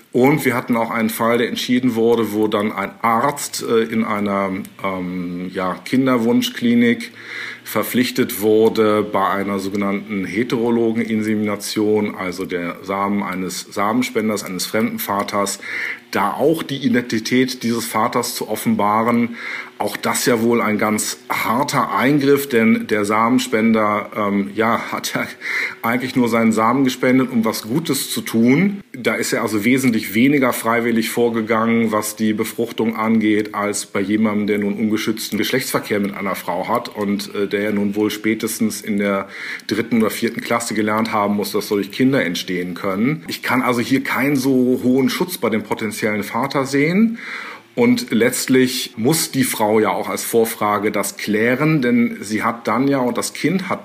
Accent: German